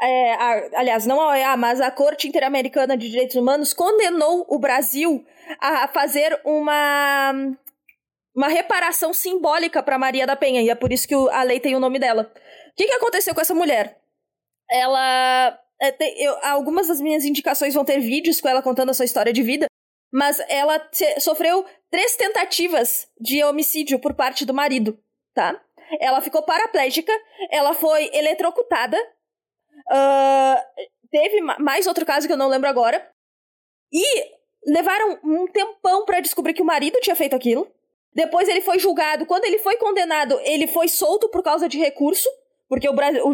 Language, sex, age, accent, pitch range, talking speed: Portuguese, female, 20-39, Brazilian, 275-345 Hz, 170 wpm